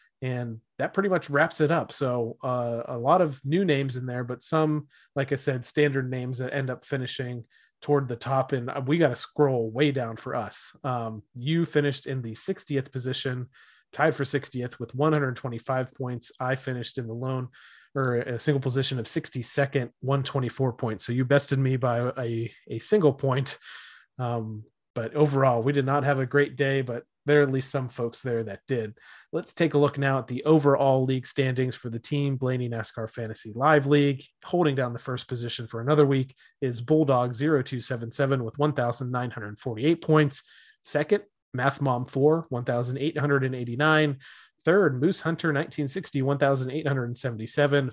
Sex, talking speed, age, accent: male, 170 wpm, 30-49, American